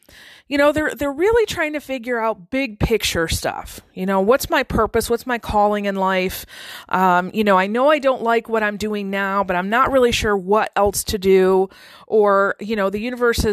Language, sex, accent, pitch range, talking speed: English, female, American, 200-265 Hz, 215 wpm